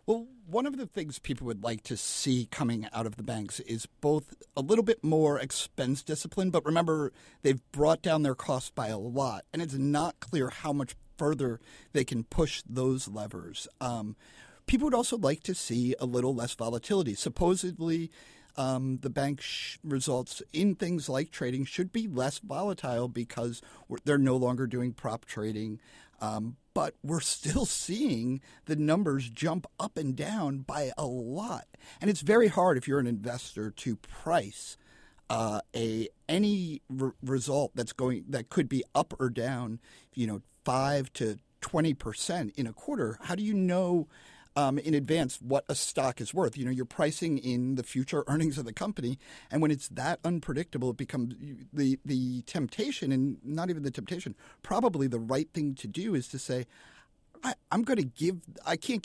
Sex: male